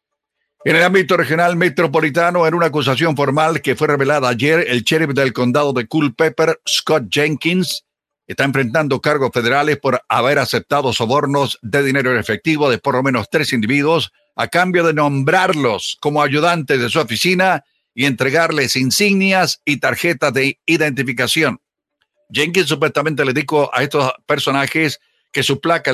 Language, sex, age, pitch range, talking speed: Spanish, male, 60-79, 130-160 Hz, 150 wpm